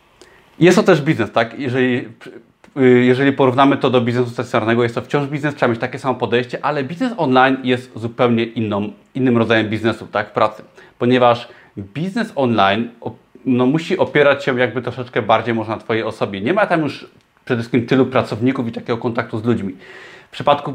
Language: Polish